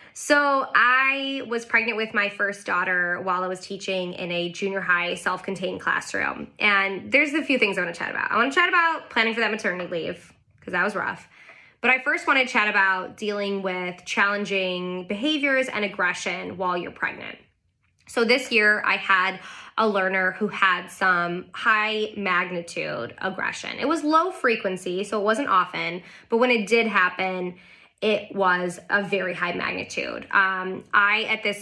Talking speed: 180 wpm